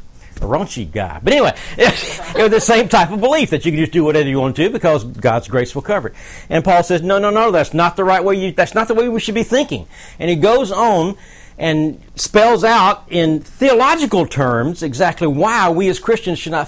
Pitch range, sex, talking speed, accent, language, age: 145-200 Hz, male, 225 wpm, American, English, 60-79